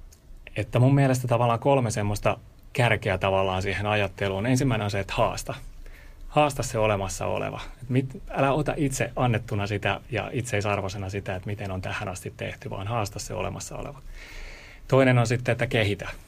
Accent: native